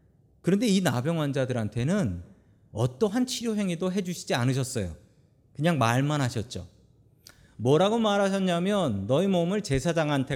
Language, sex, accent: Korean, male, native